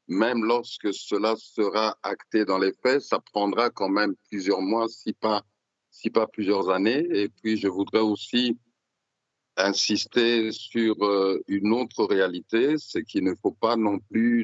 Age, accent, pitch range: 50-69, French, 95-115 Hz